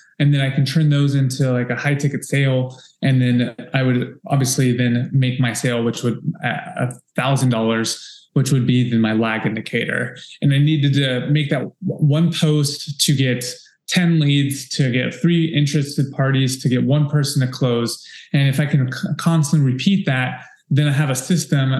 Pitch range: 125-145 Hz